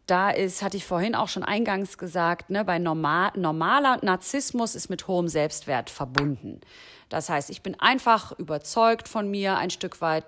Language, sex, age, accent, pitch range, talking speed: English, female, 30-49, German, 175-225 Hz, 175 wpm